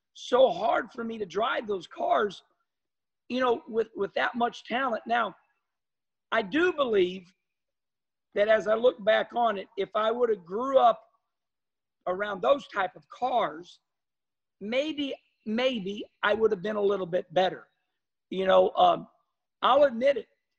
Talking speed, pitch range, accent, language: 155 wpm, 205-265 Hz, American, English